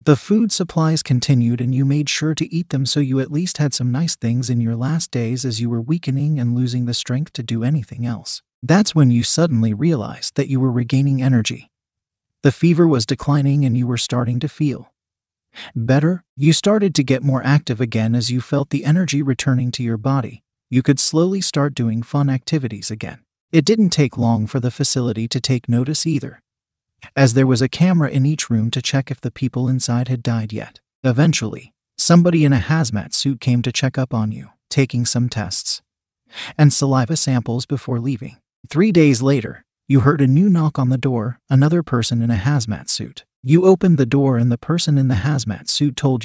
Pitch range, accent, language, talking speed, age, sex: 120-145 Hz, American, English, 205 wpm, 30-49, male